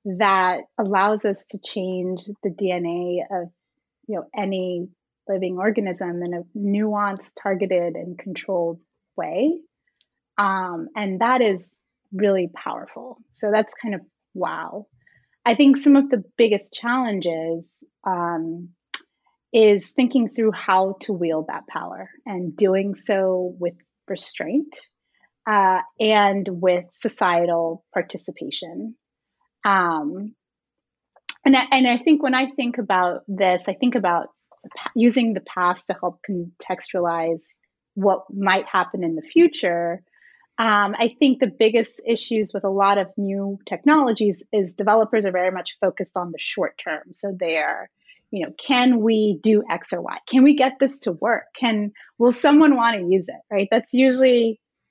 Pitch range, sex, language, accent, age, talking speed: 180-235 Hz, female, English, American, 30-49, 145 wpm